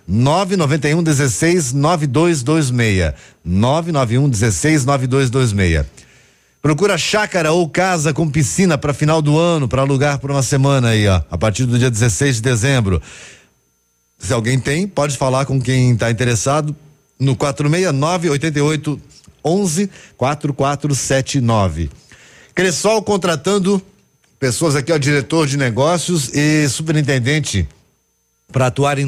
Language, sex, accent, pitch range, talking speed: Portuguese, male, Brazilian, 125-160 Hz, 130 wpm